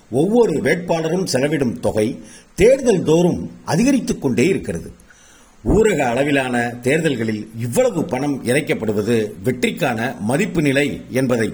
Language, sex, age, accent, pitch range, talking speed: Tamil, male, 50-69, native, 125-200 Hz, 100 wpm